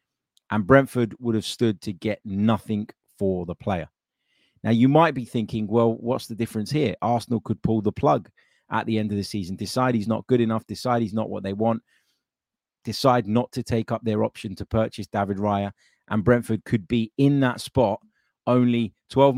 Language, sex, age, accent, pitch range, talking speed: English, male, 30-49, British, 105-120 Hz, 195 wpm